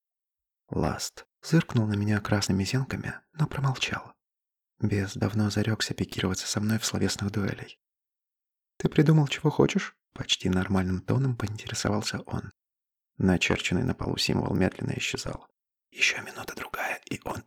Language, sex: Russian, male